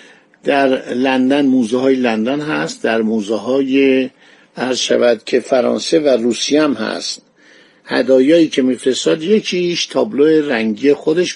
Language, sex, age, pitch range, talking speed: Persian, male, 50-69, 125-160 Hz, 120 wpm